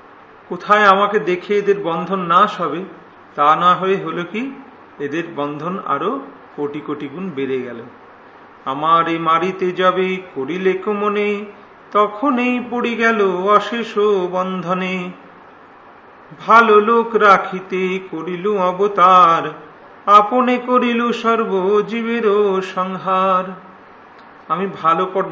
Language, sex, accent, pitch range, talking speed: Hindi, male, native, 170-210 Hz, 35 wpm